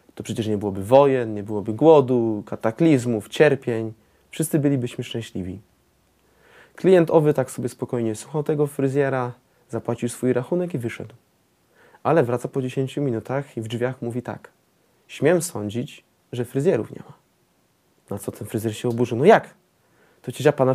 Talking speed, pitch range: 155 wpm, 115-135 Hz